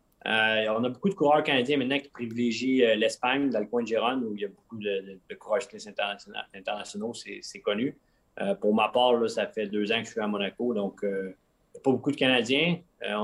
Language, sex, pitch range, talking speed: French, male, 100-130 Hz, 240 wpm